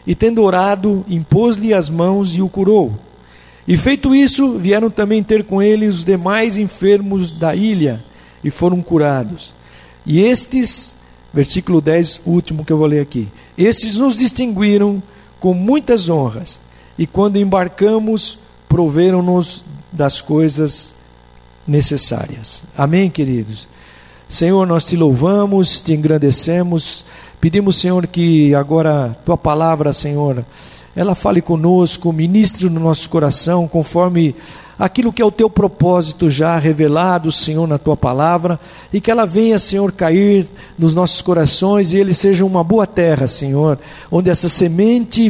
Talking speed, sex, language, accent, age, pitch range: 135 wpm, male, Portuguese, Brazilian, 50-69, 160-200 Hz